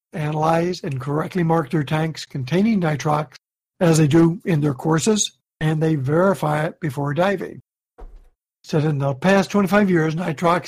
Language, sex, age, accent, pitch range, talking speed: English, male, 60-79, American, 155-185 Hz, 150 wpm